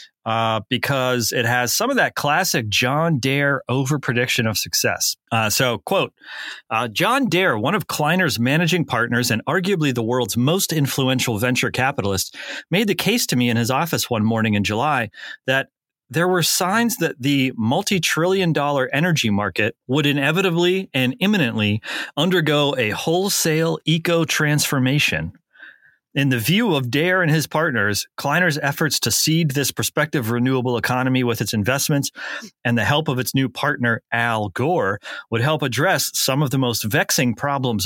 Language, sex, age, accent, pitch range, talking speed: English, male, 30-49, American, 115-155 Hz, 160 wpm